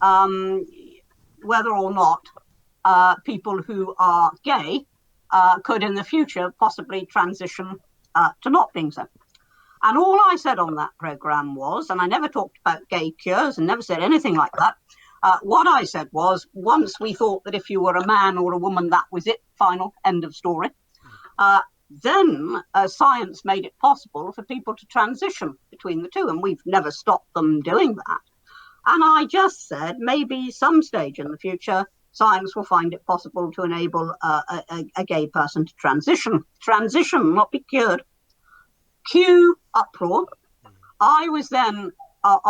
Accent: British